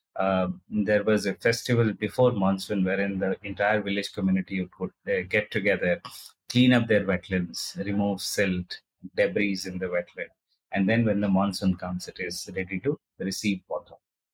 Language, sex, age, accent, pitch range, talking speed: Telugu, male, 30-49, native, 95-115 Hz, 155 wpm